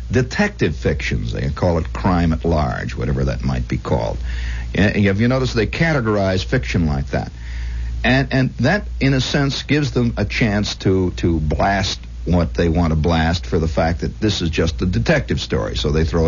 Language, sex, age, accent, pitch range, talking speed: English, male, 60-79, American, 75-120 Hz, 195 wpm